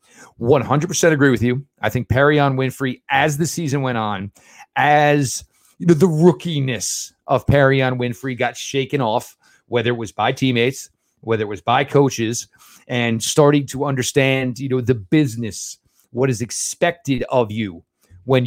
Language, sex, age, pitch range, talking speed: English, male, 40-59, 120-145 Hz, 155 wpm